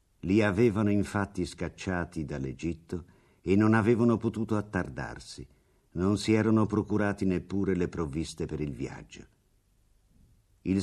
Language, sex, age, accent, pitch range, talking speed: Italian, male, 50-69, native, 80-100 Hz, 115 wpm